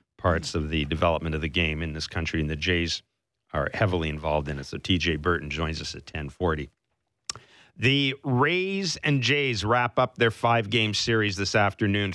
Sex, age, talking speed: male, 40-59, 180 wpm